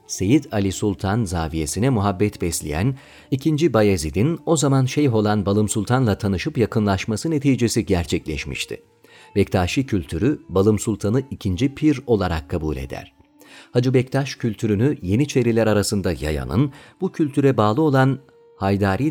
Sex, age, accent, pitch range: male, 40-59, native, 95-130 Hz